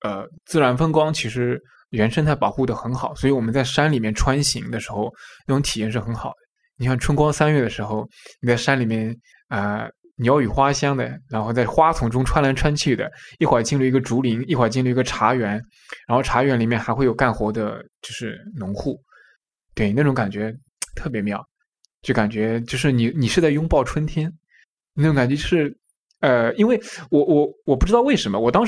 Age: 20-39